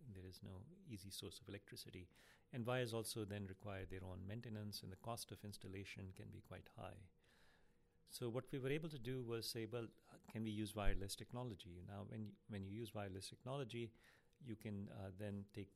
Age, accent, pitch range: 50-69, Indian, 100-120 Hz